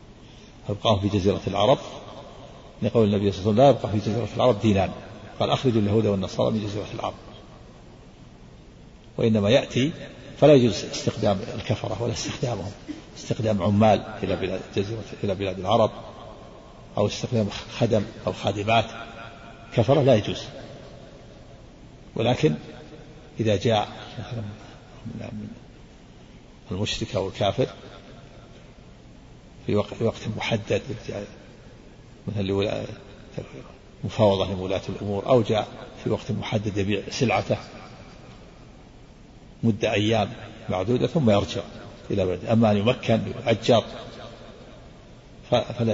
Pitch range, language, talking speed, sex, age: 100-120 Hz, Arabic, 100 wpm, male, 50-69